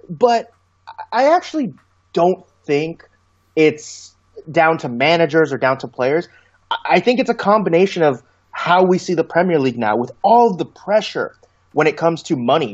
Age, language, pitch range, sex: 30-49, English, 125-190 Hz, male